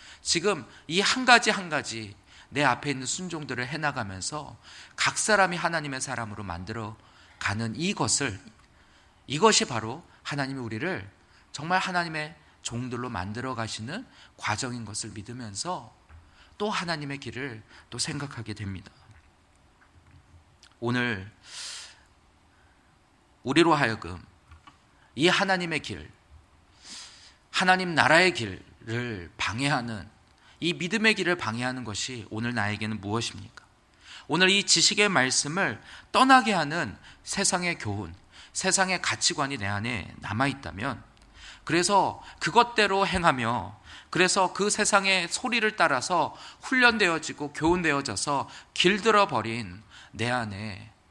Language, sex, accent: Korean, male, native